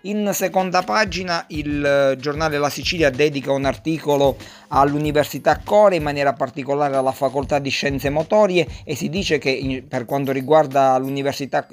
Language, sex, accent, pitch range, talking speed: Italian, male, native, 130-155 Hz, 145 wpm